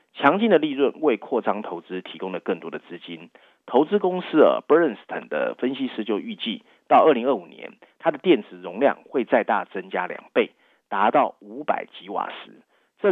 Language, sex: Chinese, male